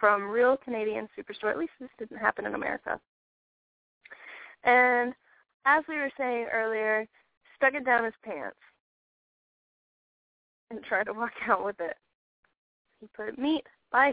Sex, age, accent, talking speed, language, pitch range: female, 10-29, American, 140 wpm, English, 215-280 Hz